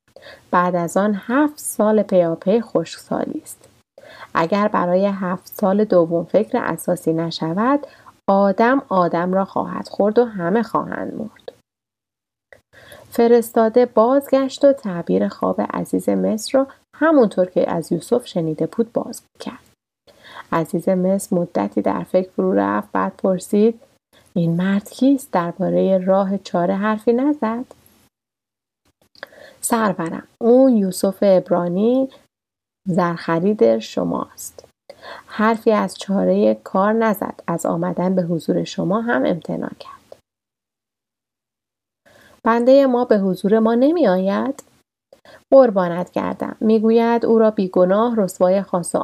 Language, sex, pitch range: Persian, female, 175-235 Hz